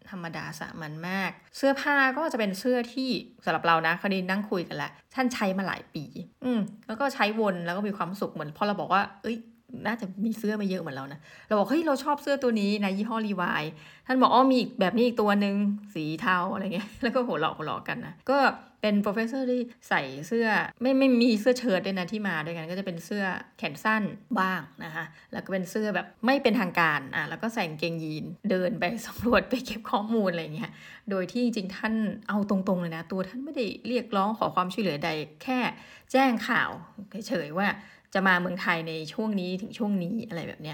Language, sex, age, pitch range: Thai, female, 20-39, 180-230 Hz